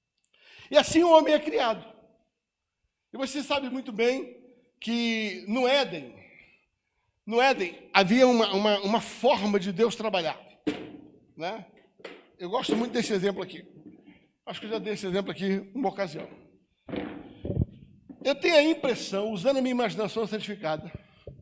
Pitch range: 185-255 Hz